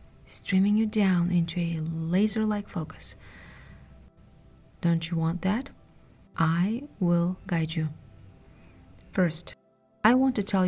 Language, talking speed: English, 110 wpm